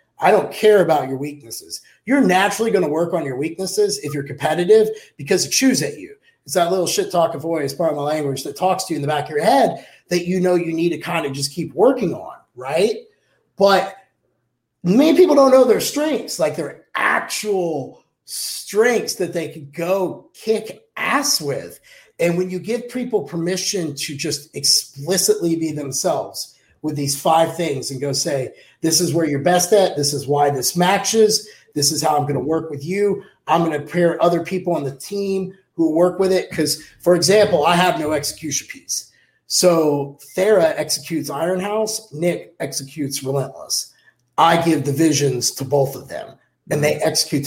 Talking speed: 190 wpm